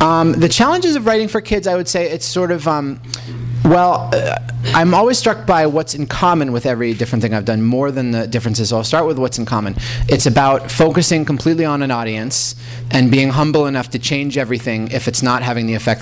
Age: 30-49